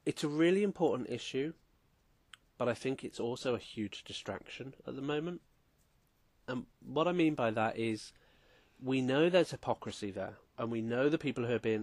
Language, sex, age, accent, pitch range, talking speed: English, male, 30-49, British, 105-140 Hz, 185 wpm